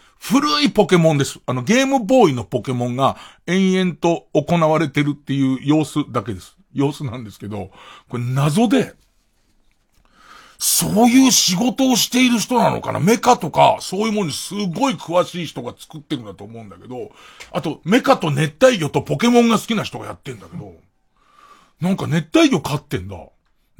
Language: Japanese